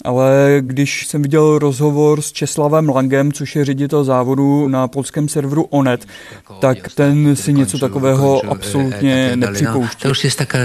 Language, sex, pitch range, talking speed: Czech, male, 135-150 Hz, 150 wpm